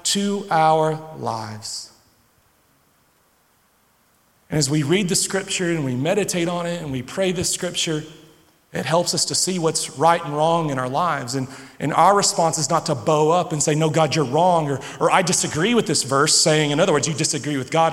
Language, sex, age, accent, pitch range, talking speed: English, male, 40-59, American, 135-170 Hz, 205 wpm